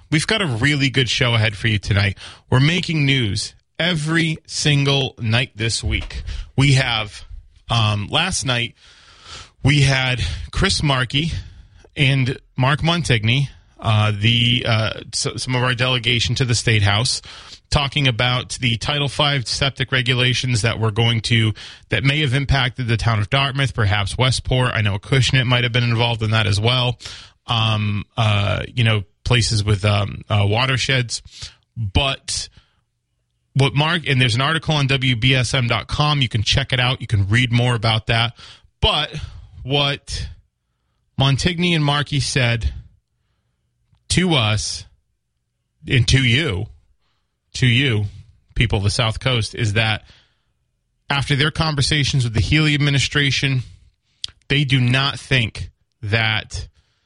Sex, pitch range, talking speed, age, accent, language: male, 105-135 Hz, 140 wpm, 30-49, American, English